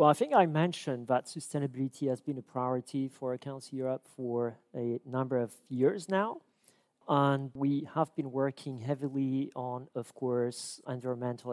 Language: English